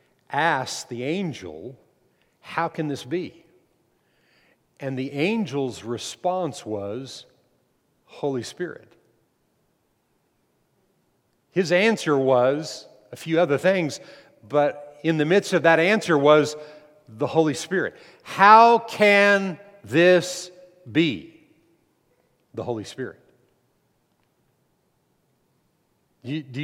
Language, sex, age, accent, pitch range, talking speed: English, male, 50-69, American, 135-180 Hz, 90 wpm